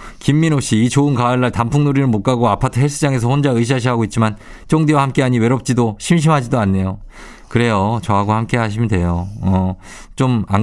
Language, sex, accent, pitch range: Korean, male, native, 100-140 Hz